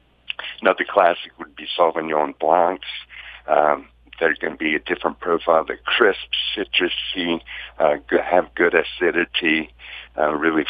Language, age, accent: English, 60-79, American